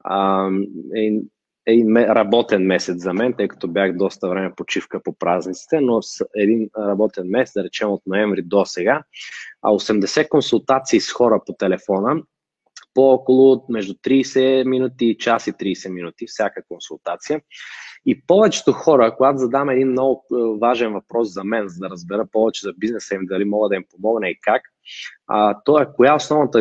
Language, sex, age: Bulgarian, male, 20-39